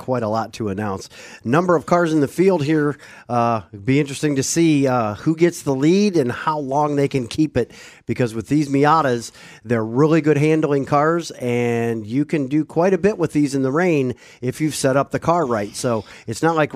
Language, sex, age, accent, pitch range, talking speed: English, male, 40-59, American, 130-170 Hz, 220 wpm